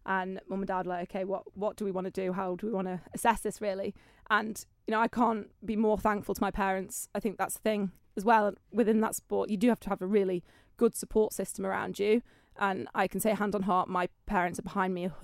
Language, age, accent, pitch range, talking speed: English, 20-39, British, 190-225 Hz, 270 wpm